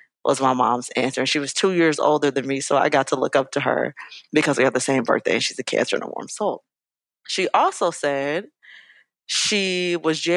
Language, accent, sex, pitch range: English, American, female, 140-175 Hz